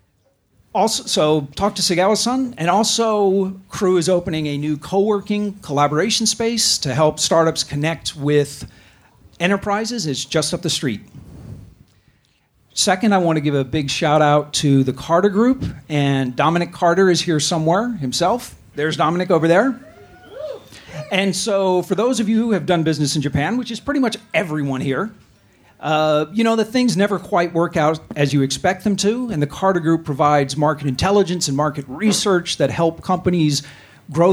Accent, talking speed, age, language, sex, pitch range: American, 170 wpm, 40-59, English, male, 140-190 Hz